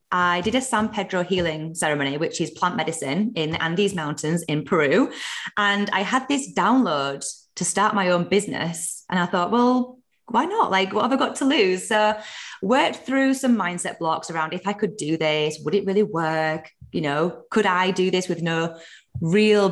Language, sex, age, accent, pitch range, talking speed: English, female, 20-39, British, 165-235 Hz, 200 wpm